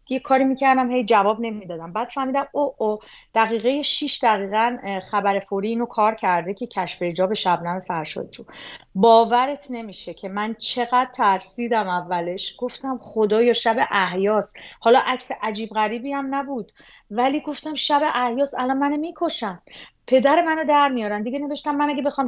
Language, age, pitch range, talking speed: Persian, 30-49, 205-270 Hz, 155 wpm